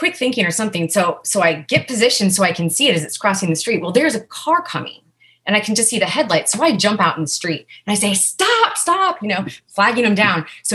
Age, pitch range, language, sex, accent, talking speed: 30-49, 170-215 Hz, English, female, American, 270 wpm